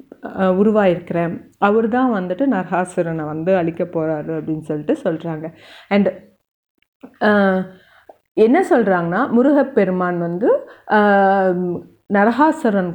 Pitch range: 180-245 Hz